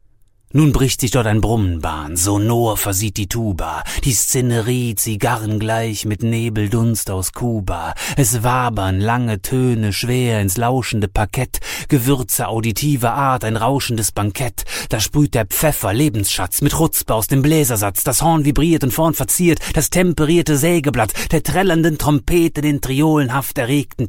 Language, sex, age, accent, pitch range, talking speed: German, male, 30-49, German, 100-130 Hz, 140 wpm